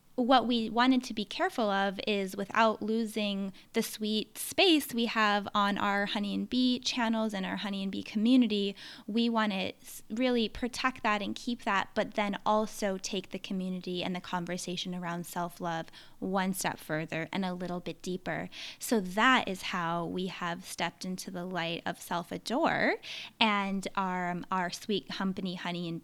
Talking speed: 170 wpm